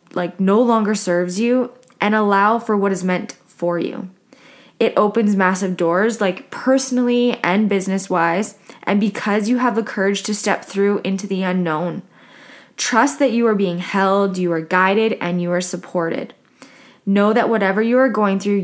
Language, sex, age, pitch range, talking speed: English, female, 20-39, 190-240 Hz, 175 wpm